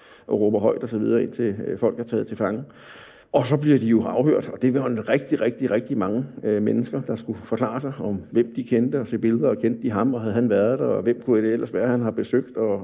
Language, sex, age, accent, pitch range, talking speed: Danish, male, 60-79, native, 115-140 Hz, 270 wpm